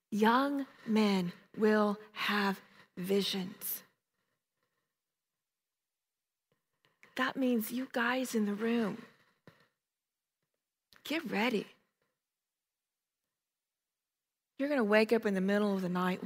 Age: 40-59